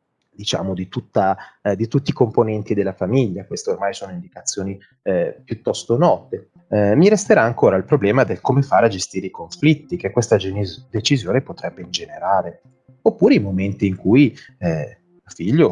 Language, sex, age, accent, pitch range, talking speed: Italian, male, 30-49, native, 100-155 Hz, 170 wpm